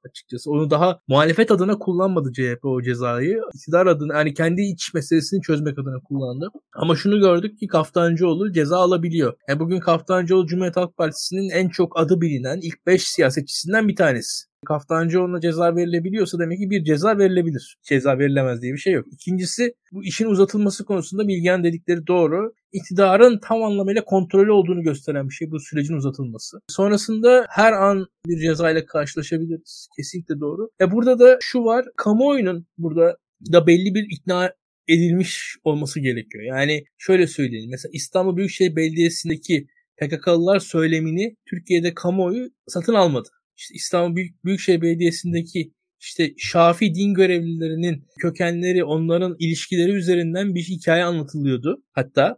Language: Turkish